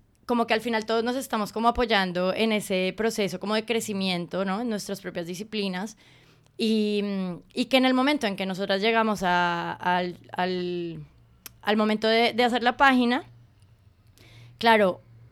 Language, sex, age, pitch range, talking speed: Spanish, female, 20-39, 190-225 Hz, 160 wpm